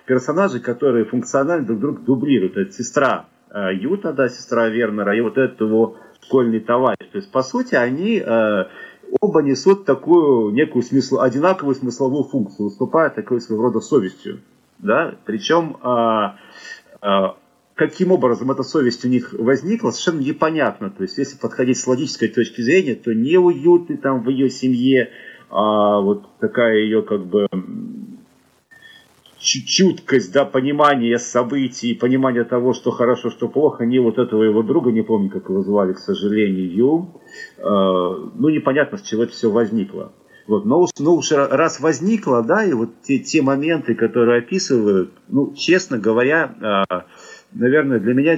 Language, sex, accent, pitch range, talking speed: Russian, male, native, 115-155 Hz, 150 wpm